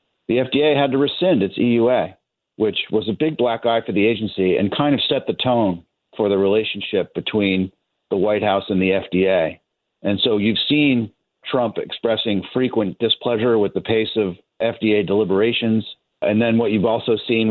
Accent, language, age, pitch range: American, English, 40-59, 95-115 Hz